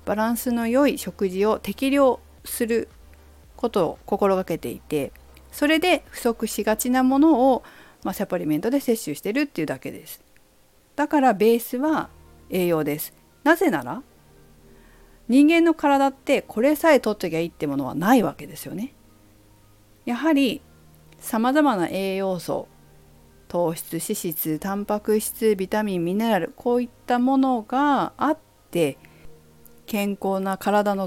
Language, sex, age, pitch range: Japanese, female, 50-69, 160-255 Hz